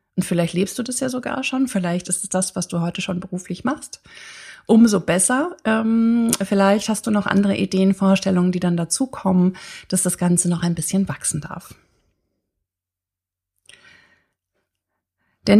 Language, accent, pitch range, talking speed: German, German, 175-205 Hz, 160 wpm